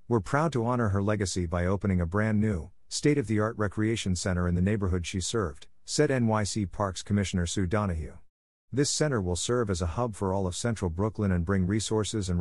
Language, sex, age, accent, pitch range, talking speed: English, male, 50-69, American, 90-115 Hz, 200 wpm